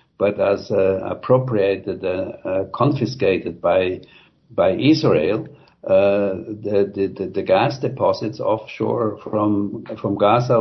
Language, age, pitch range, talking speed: English, 60-79, 100-115 Hz, 120 wpm